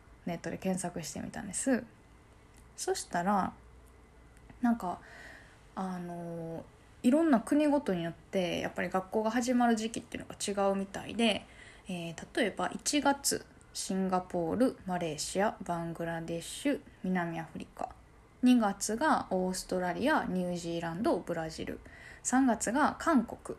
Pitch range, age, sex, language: 180-250 Hz, 20-39, female, Japanese